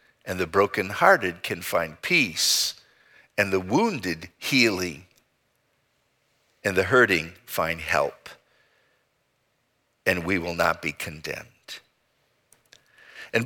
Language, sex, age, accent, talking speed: English, male, 50-69, American, 100 wpm